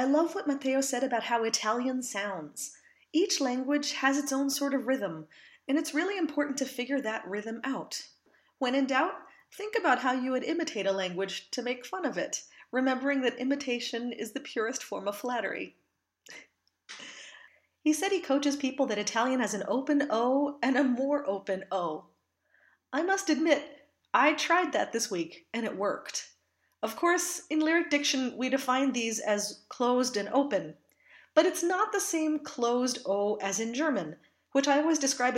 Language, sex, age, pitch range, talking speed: English, female, 30-49, 235-300 Hz, 175 wpm